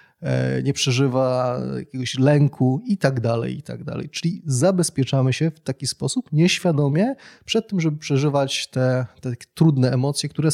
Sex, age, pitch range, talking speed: male, 20-39, 130-160 Hz, 150 wpm